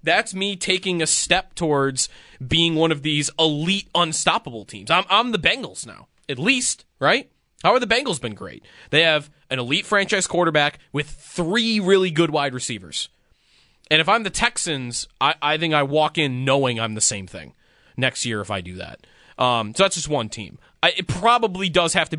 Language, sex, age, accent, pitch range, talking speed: English, male, 20-39, American, 140-190 Hz, 195 wpm